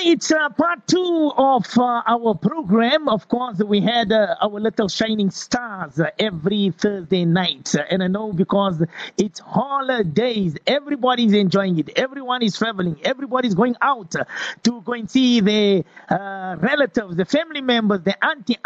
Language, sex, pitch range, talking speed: English, male, 195-270 Hz, 160 wpm